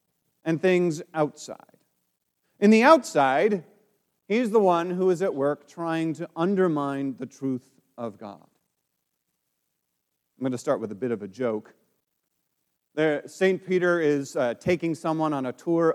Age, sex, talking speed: 40-59, male, 145 wpm